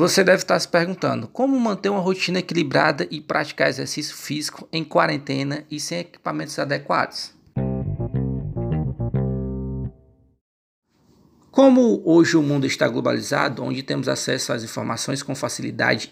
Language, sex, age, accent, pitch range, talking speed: Portuguese, male, 20-39, Brazilian, 145-195 Hz, 125 wpm